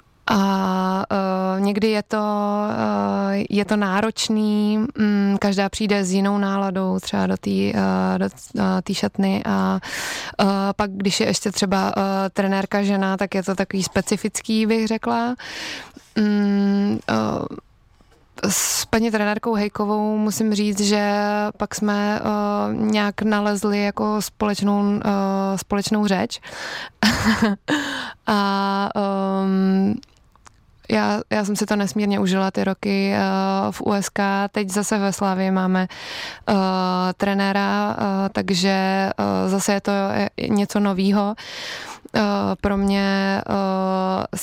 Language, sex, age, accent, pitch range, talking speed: Czech, female, 20-39, native, 185-205 Hz, 125 wpm